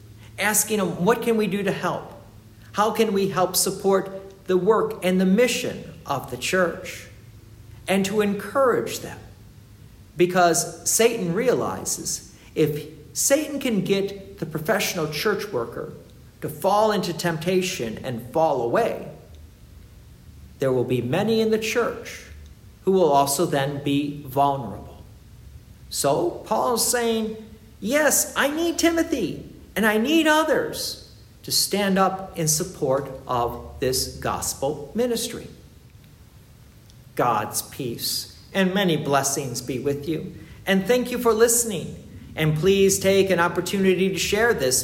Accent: American